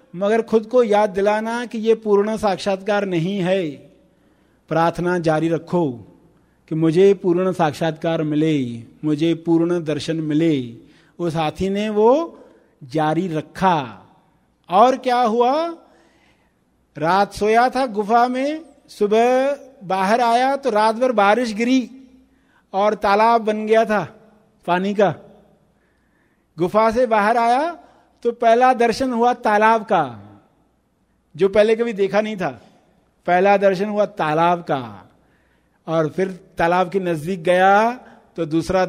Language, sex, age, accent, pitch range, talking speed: Hindi, male, 50-69, native, 160-225 Hz, 125 wpm